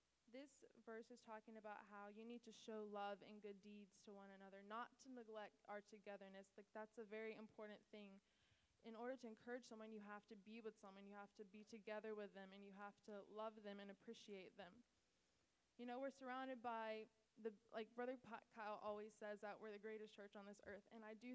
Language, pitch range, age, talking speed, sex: English, 205-230 Hz, 20-39, 215 wpm, female